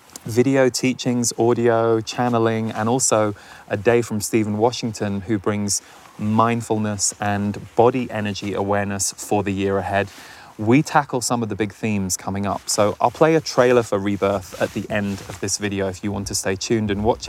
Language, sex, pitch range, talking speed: English, male, 100-120 Hz, 180 wpm